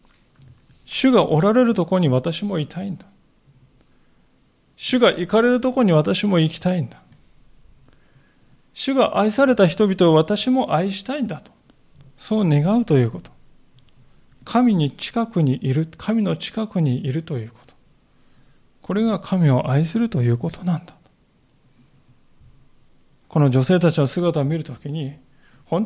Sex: male